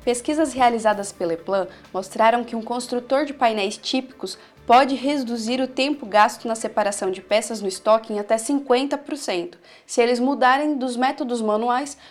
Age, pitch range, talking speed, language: 20-39, 215-265 Hz, 155 wpm, Portuguese